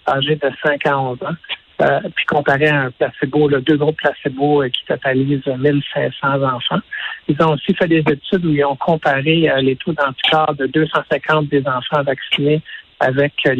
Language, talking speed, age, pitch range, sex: French, 180 wpm, 60-79, 135-155 Hz, male